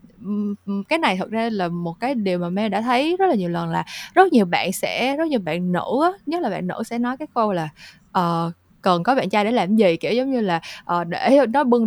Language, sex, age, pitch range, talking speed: Vietnamese, female, 20-39, 180-245 Hz, 260 wpm